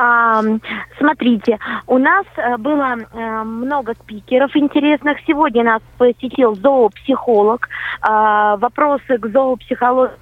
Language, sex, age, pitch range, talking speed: Russian, female, 20-39, 220-270 Hz, 80 wpm